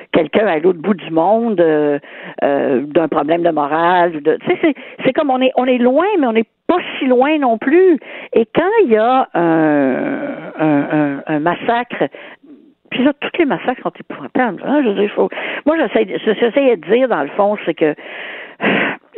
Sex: female